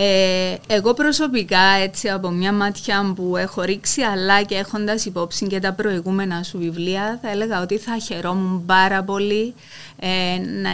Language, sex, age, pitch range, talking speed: Greek, female, 30-49, 180-215 Hz, 145 wpm